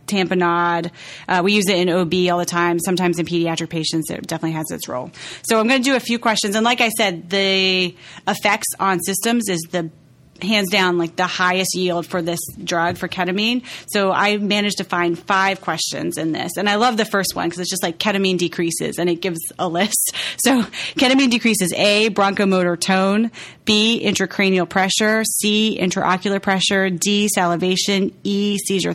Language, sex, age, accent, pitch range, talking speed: English, female, 30-49, American, 175-210 Hz, 185 wpm